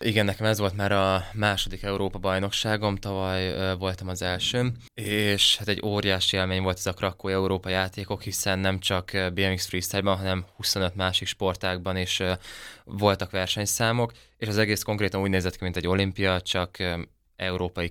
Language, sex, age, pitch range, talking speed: Hungarian, male, 20-39, 95-105 Hz, 160 wpm